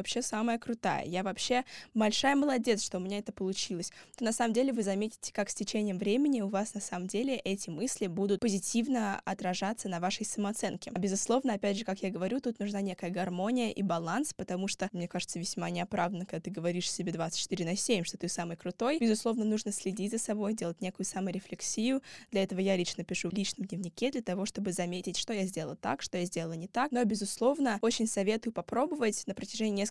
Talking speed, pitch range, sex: 205 wpm, 185-225 Hz, female